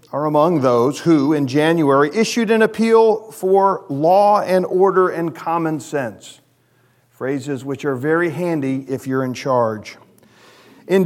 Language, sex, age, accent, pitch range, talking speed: English, male, 40-59, American, 135-185 Hz, 140 wpm